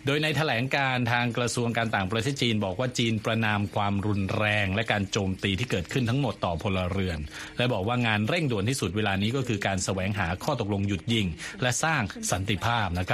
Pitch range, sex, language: 100-130 Hz, male, Thai